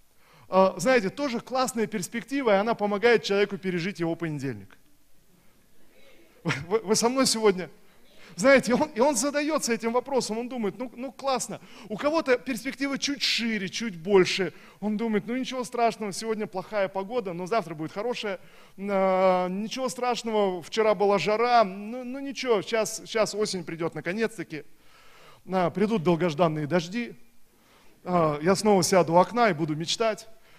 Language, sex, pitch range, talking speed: Russian, male, 170-225 Hz, 135 wpm